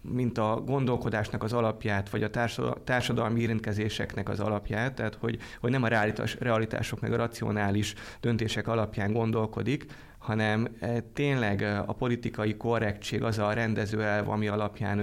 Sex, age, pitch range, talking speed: male, 30-49, 105-120 Hz, 140 wpm